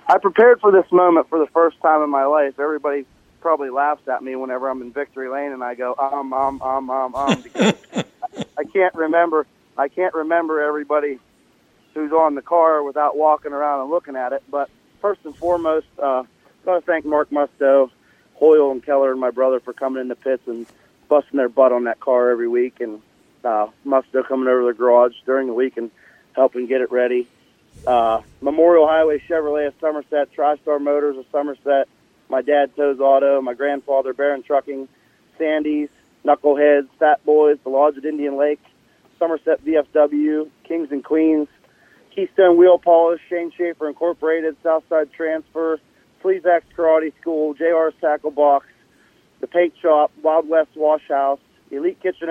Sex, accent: male, American